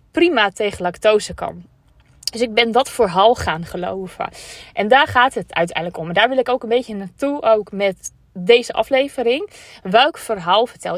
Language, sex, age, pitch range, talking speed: Dutch, female, 20-39, 200-255 Hz, 175 wpm